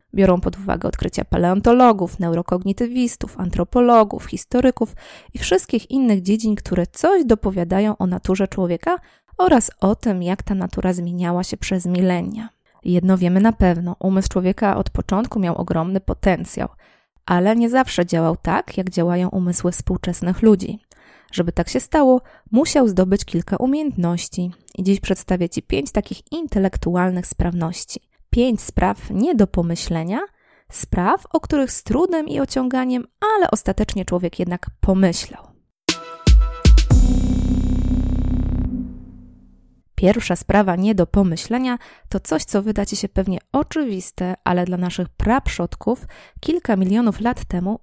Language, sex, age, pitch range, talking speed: Polish, female, 20-39, 180-225 Hz, 130 wpm